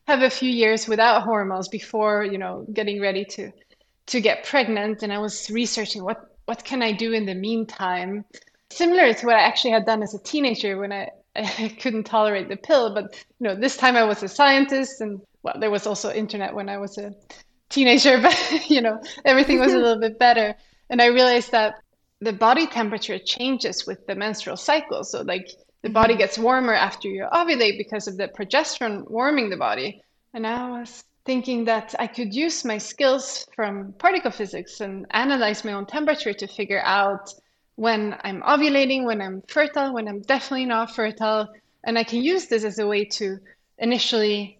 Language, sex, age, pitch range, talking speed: English, female, 20-39, 205-255 Hz, 190 wpm